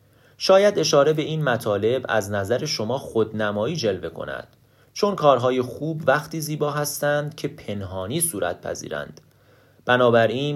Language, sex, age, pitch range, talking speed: Persian, male, 30-49, 110-150 Hz, 125 wpm